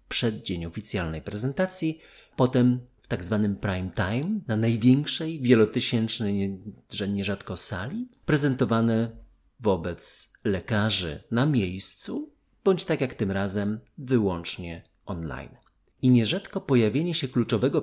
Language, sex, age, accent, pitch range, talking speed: Polish, male, 30-49, native, 100-130 Hz, 110 wpm